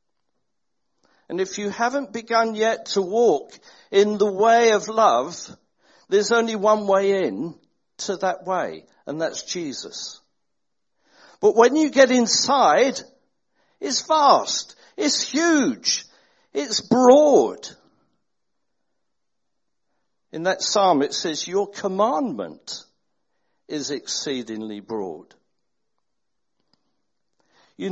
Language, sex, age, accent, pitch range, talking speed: English, male, 60-79, British, 195-260 Hz, 100 wpm